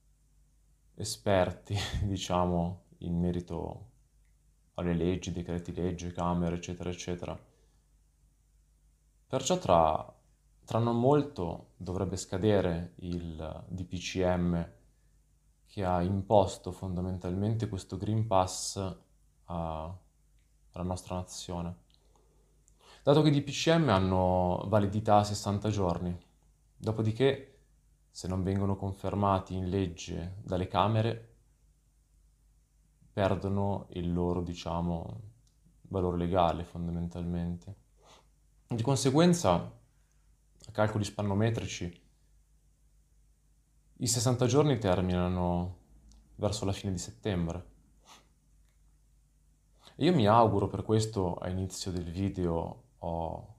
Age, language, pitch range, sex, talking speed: 20-39, Italian, 85-105 Hz, male, 90 wpm